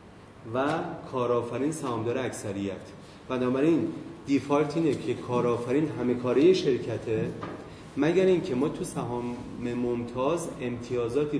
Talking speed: 95 wpm